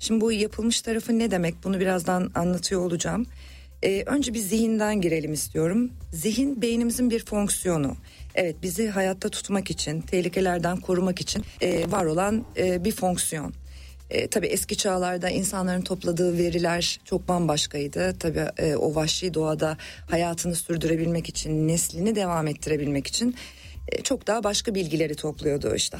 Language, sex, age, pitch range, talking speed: Turkish, female, 40-59, 160-215 Hz, 145 wpm